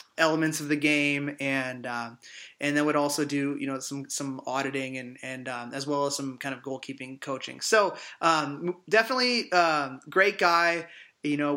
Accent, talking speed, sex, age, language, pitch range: American, 180 wpm, male, 20-39, English, 135-150 Hz